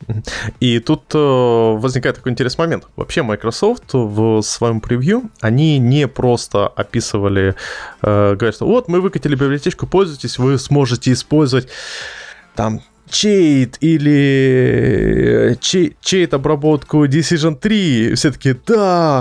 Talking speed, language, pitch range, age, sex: 120 wpm, Russian, 115-145 Hz, 20-39, male